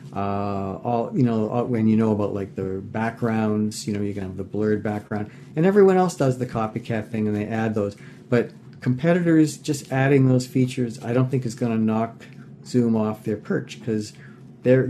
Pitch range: 105-125 Hz